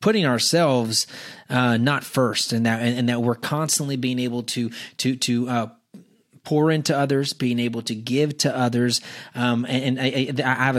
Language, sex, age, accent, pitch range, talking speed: English, male, 30-49, American, 120-135 Hz, 185 wpm